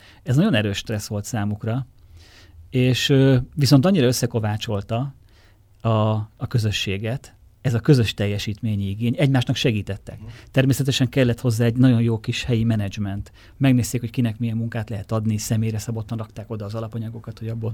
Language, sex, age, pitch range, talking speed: Hungarian, male, 30-49, 105-130 Hz, 150 wpm